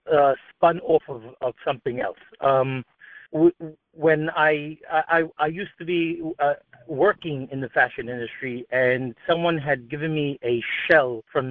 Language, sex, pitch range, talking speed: English, male, 140-175 Hz, 155 wpm